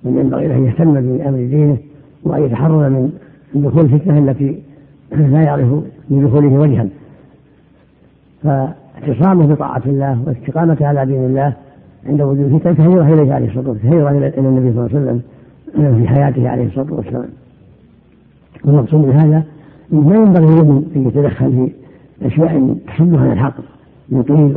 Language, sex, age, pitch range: Arabic, female, 60-79, 135-155 Hz